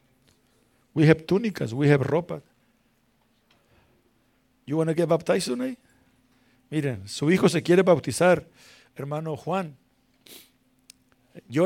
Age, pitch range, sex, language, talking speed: 50-69, 130-185 Hz, male, Spanish, 105 wpm